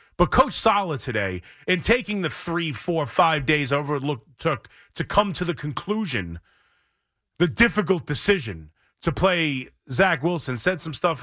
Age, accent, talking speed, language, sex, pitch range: 30-49, American, 155 wpm, English, male, 135-200 Hz